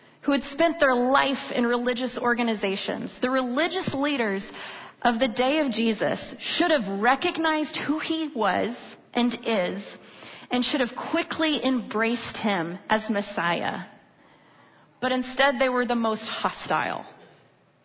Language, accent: English, American